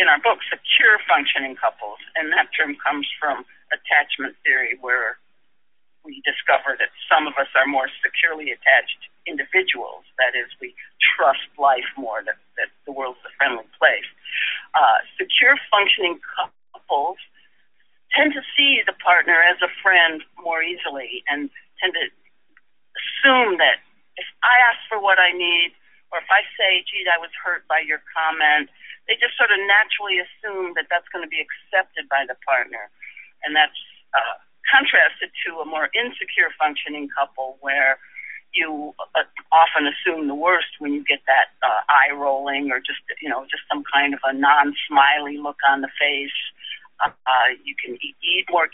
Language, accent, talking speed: English, American, 165 wpm